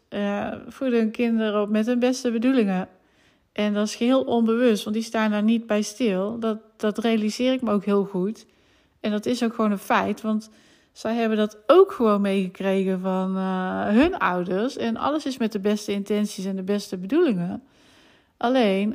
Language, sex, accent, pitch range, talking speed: Dutch, female, Dutch, 195-230 Hz, 185 wpm